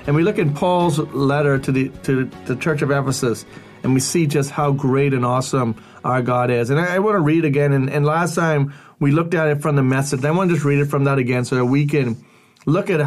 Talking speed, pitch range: 260 wpm, 130-160 Hz